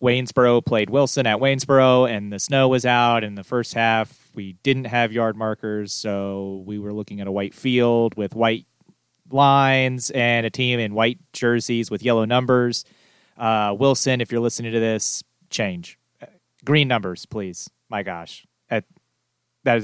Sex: male